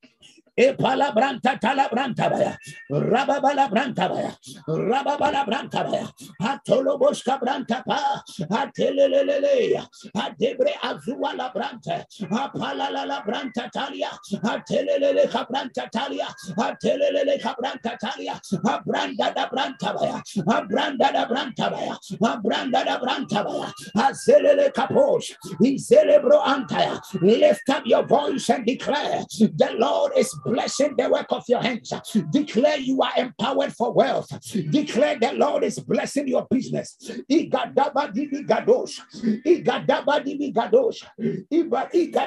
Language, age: English, 50-69